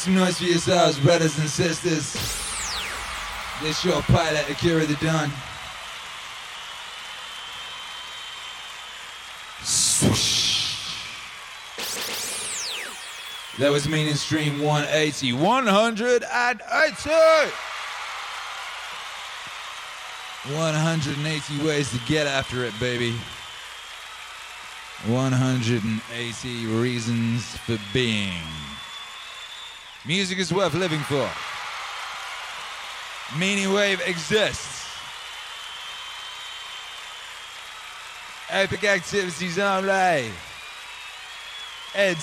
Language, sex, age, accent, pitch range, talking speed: English, male, 30-49, American, 120-175 Hz, 65 wpm